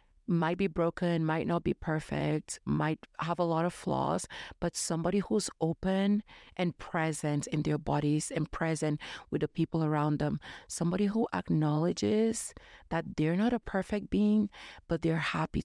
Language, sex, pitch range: Japanese, female, 155-185 Hz